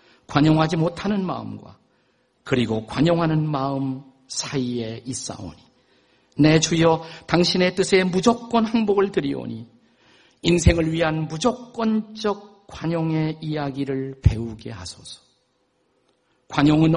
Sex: male